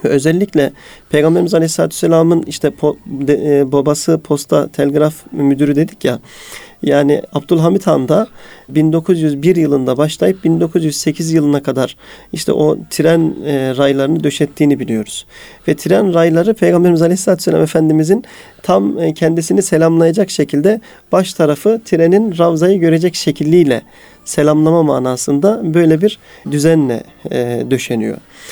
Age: 40-59